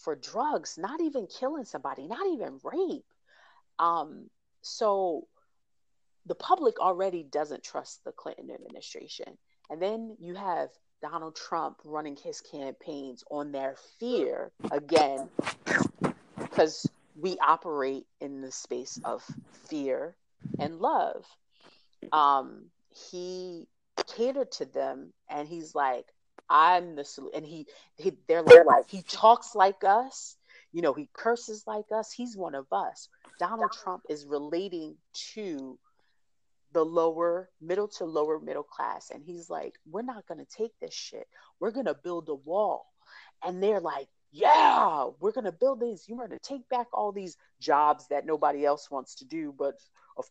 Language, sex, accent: English, female, American